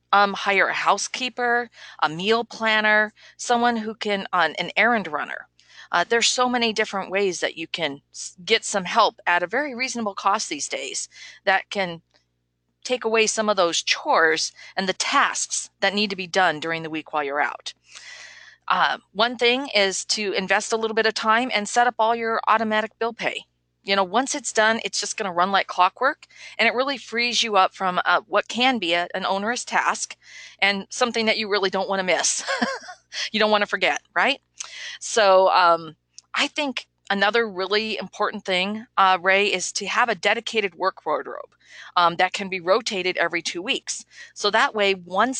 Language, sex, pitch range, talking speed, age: English, female, 185-230 Hz, 190 wpm, 40-59